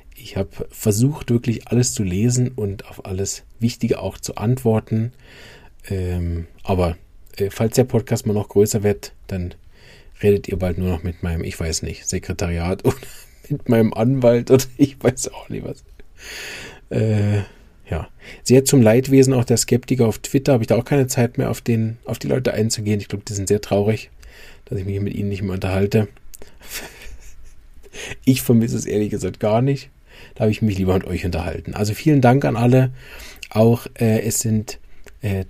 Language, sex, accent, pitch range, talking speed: German, male, German, 95-120 Hz, 180 wpm